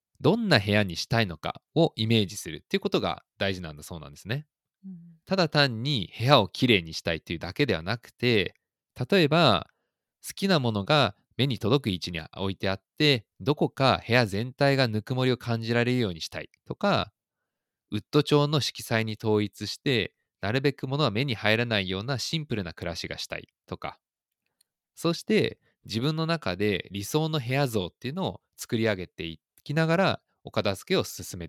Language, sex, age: Japanese, male, 20-39